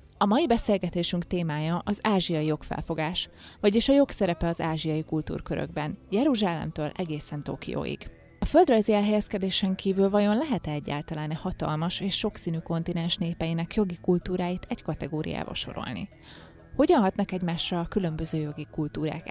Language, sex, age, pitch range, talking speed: Hungarian, female, 30-49, 160-195 Hz, 125 wpm